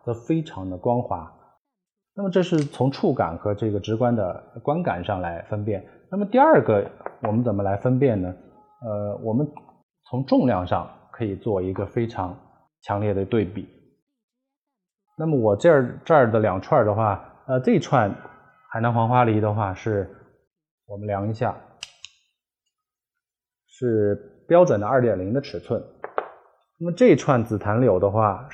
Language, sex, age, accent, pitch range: Chinese, male, 20-39, native, 105-145 Hz